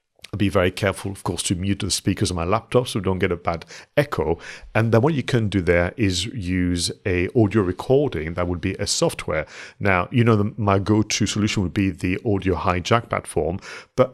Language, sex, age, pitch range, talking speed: English, male, 50-69, 90-115 Hz, 210 wpm